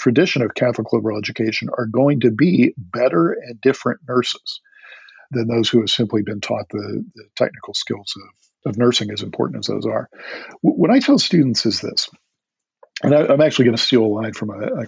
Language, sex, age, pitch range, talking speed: English, male, 50-69, 115-160 Hz, 200 wpm